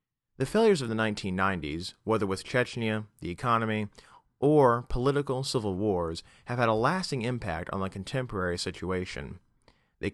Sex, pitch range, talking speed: male, 95-130 Hz, 140 wpm